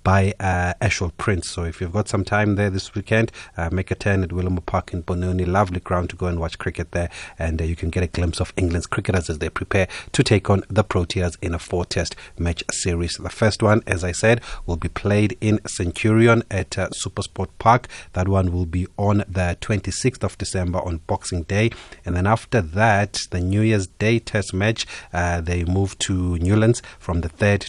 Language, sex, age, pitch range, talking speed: English, male, 30-49, 85-100 Hz, 210 wpm